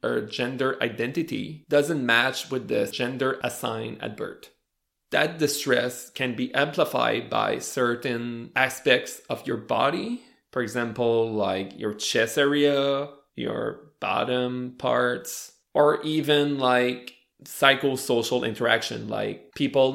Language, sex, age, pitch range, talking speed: English, male, 20-39, 115-140 Hz, 110 wpm